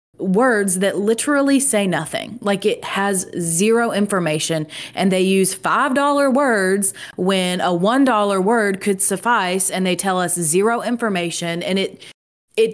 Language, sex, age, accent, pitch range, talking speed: English, female, 30-49, American, 175-220 Hz, 140 wpm